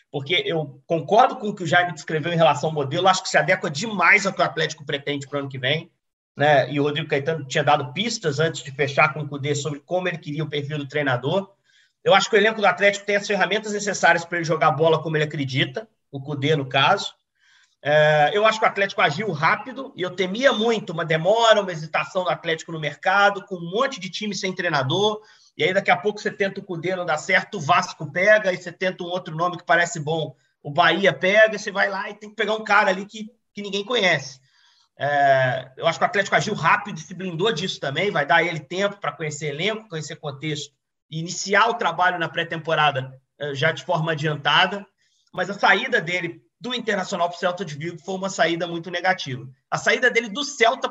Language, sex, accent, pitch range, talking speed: Portuguese, male, Brazilian, 155-200 Hz, 225 wpm